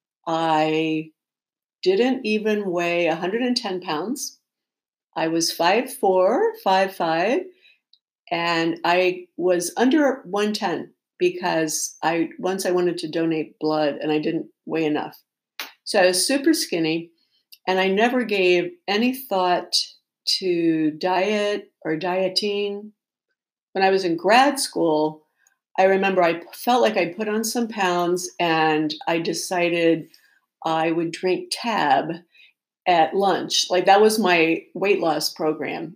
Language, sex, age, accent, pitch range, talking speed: English, female, 50-69, American, 165-210 Hz, 130 wpm